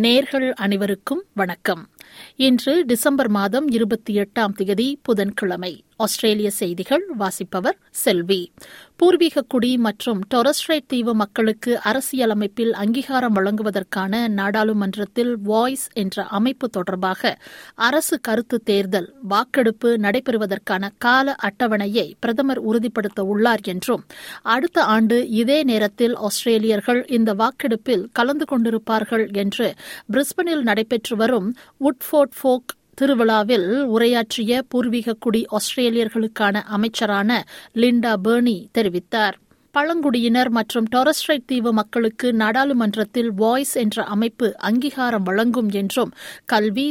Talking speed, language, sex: 95 wpm, Tamil, female